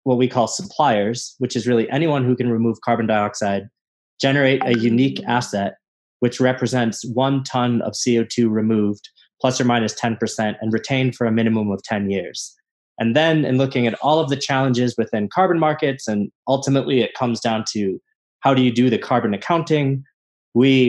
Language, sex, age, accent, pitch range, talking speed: English, male, 20-39, American, 110-135 Hz, 180 wpm